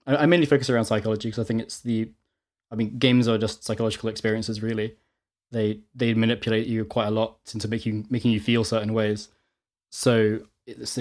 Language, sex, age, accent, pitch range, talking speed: English, male, 10-29, British, 110-125 Hz, 185 wpm